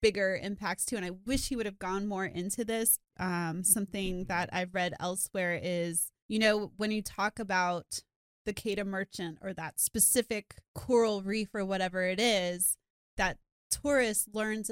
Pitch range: 175-205 Hz